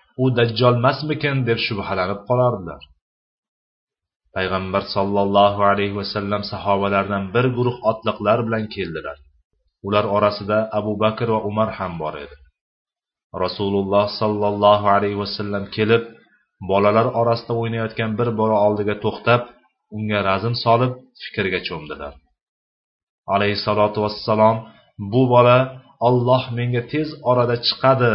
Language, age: Bulgarian, 30-49